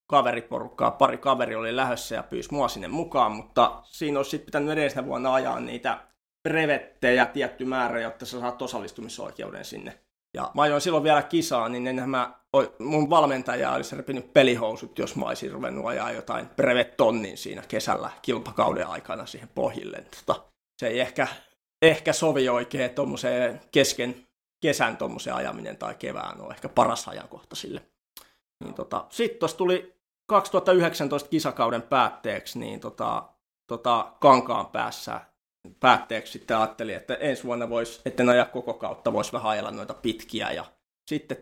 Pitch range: 125-155 Hz